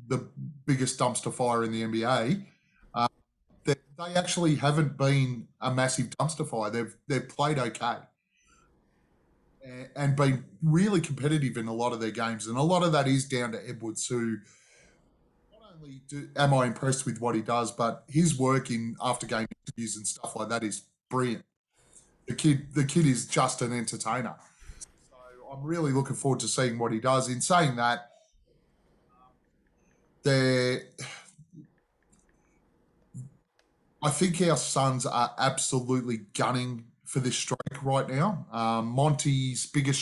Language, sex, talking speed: English, male, 155 wpm